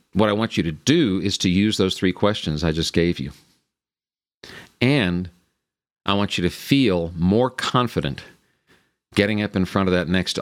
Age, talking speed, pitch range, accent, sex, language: 50-69, 180 wpm, 80-105 Hz, American, male, English